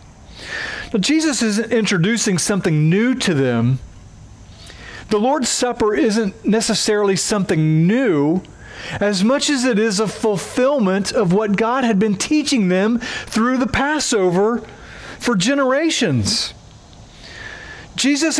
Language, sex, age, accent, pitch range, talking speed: English, male, 40-59, American, 185-250 Hz, 115 wpm